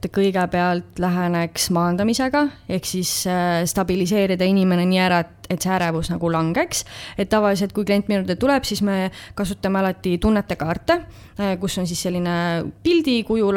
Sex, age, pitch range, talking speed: female, 20-39, 175-200 Hz, 150 wpm